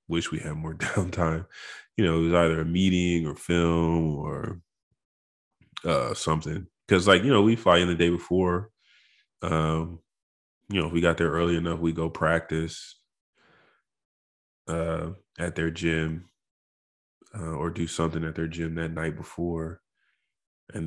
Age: 20-39